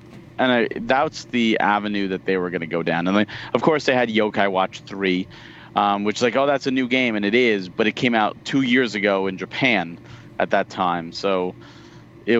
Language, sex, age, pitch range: English, male, 30-49, 95-120 Hz